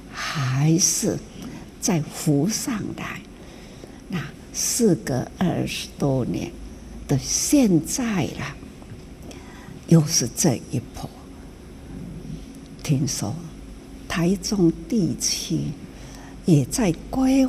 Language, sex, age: Chinese, female, 60-79